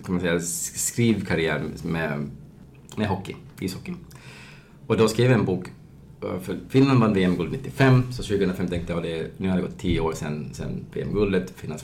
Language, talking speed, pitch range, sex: Swedish, 170 wpm, 75-105 Hz, male